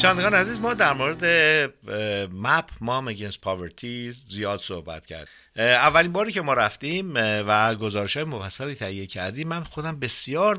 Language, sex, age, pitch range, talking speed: Persian, male, 50-69, 105-150 Hz, 140 wpm